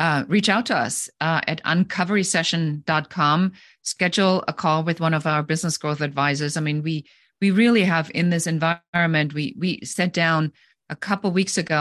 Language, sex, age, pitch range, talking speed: English, female, 40-59, 145-180 Hz, 185 wpm